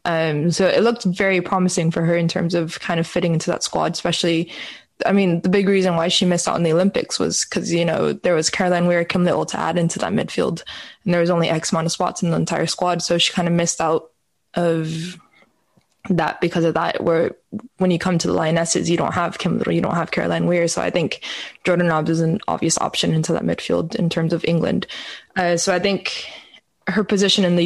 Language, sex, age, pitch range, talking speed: English, female, 20-39, 165-185 Hz, 235 wpm